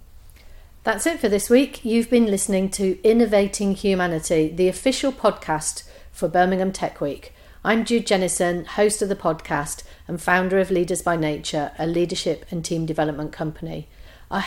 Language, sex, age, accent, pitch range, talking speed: English, female, 40-59, British, 160-205 Hz, 160 wpm